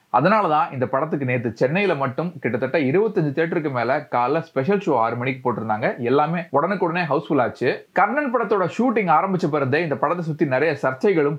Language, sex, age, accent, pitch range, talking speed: Tamil, male, 30-49, native, 125-175 Hz, 110 wpm